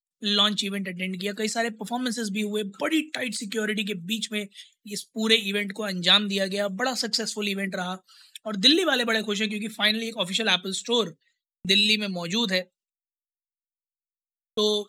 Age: 20-39